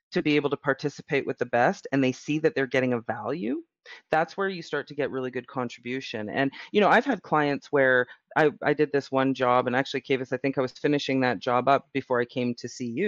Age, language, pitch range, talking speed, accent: 30-49, English, 125-155 Hz, 250 wpm, American